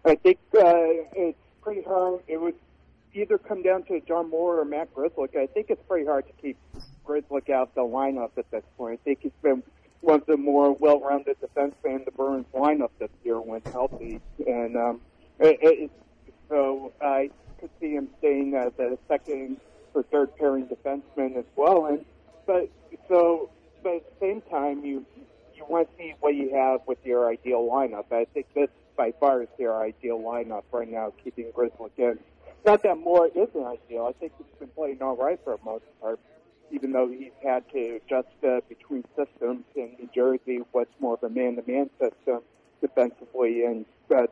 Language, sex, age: English, male, 40-59